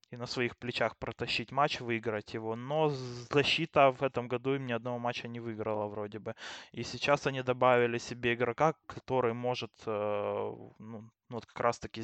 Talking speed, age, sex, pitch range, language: 170 wpm, 20-39, male, 110-130 Hz, Russian